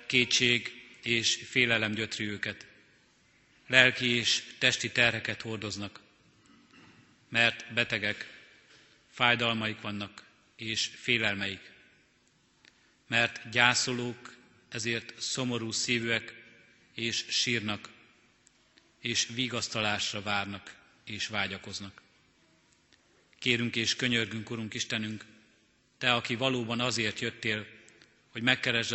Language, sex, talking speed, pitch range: Hungarian, male, 85 wpm, 110-120 Hz